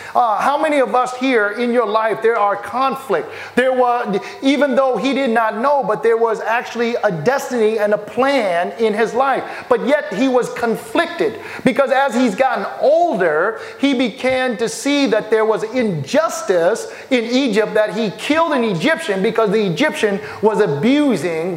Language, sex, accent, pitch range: English, male, American, 215-260 Hz